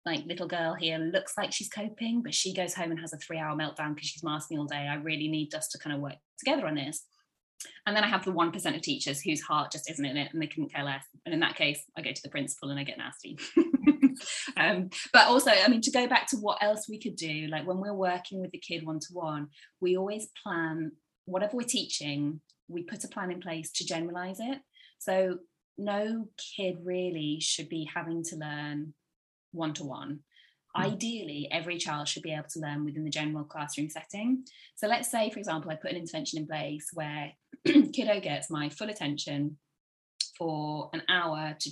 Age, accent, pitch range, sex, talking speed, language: 20-39, British, 155-215 Hz, female, 210 wpm, English